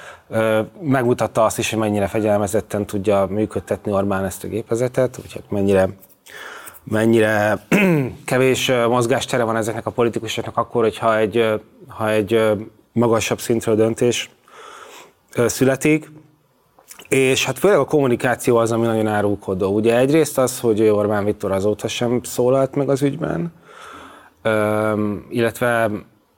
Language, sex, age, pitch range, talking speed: Hungarian, male, 20-39, 105-120 Hz, 120 wpm